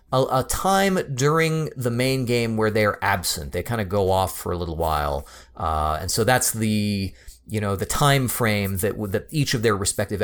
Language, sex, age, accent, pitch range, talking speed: English, male, 30-49, American, 100-130 Hz, 205 wpm